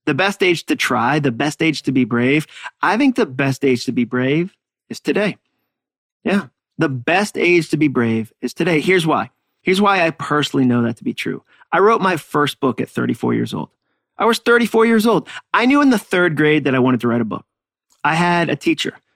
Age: 30-49